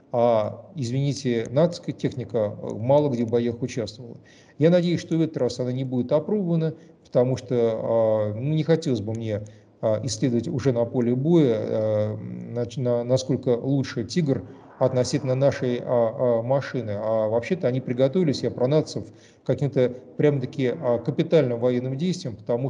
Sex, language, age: male, Russian, 40-59